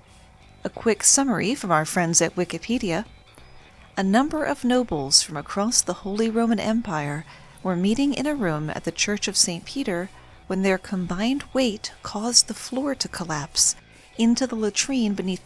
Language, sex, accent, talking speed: English, female, American, 165 wpm